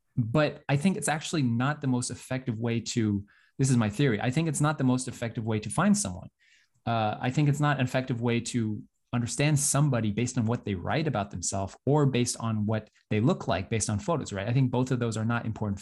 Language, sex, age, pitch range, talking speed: English, male, 20-39, 110-150 Hz, 240 wpm